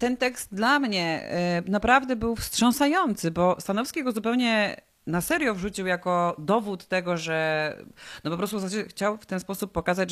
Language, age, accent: Polish, 30-49, native